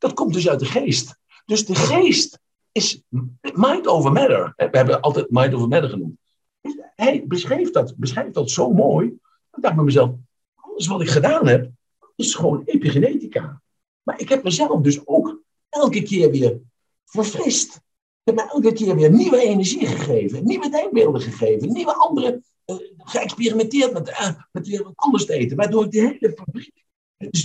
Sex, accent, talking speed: male, Dutch, 170 wpm